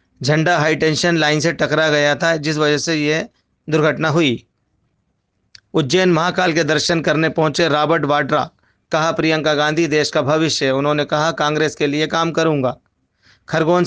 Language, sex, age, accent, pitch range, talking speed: Hindi, male, 40-59, native, 145-165 Hz, 150 wpm